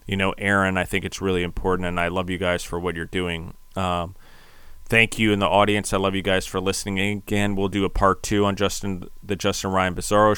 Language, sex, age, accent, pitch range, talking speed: English, male, 30-49, American, 95-100 Hz, 235 wpm